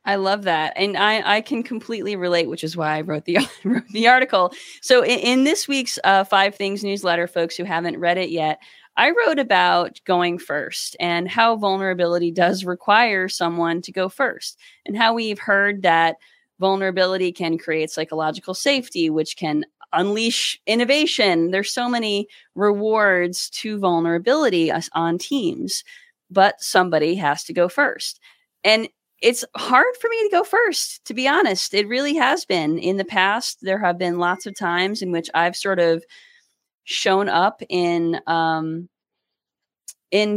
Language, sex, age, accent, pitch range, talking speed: English, female, 20-39, American, 175-230 Hz, 165 wpm